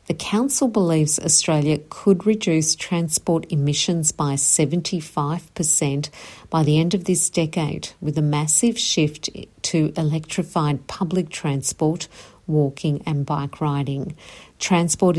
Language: English